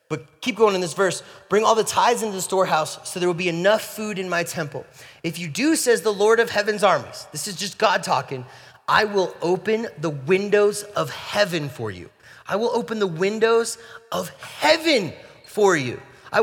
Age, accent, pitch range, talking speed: 30-49, American, 155-245 Hz, 200 wpm